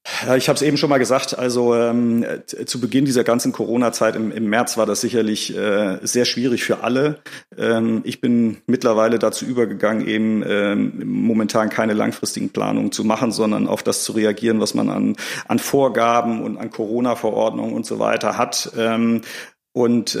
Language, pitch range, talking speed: German, 115-125 Hz, 170 wpm